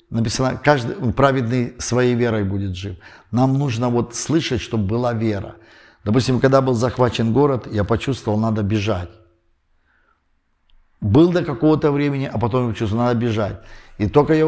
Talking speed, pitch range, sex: 150 wpm, 100-125 Hz, male